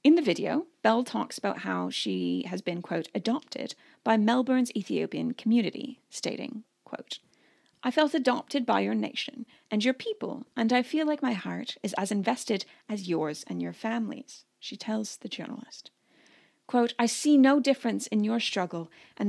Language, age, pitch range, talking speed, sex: English, 30-49, 195-285 Hz, 170 wpm, female